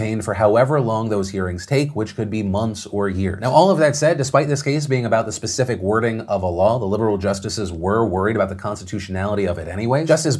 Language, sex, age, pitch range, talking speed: English, male, 30-49, 105-130 Hz, 230 wpm